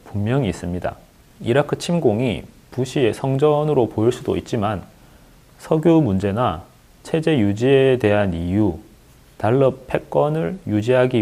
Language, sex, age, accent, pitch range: Korean, male, 30-49, native, 105-135 Hz